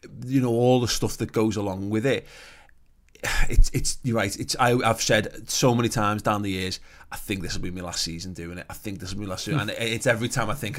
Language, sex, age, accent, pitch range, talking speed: English, male, 20-39, British, 105-135 Hz, 275 wpm